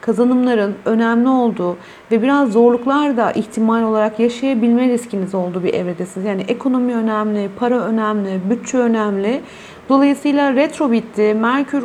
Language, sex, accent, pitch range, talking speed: Turkish, female, native, 200-245 Hz, 130 wpm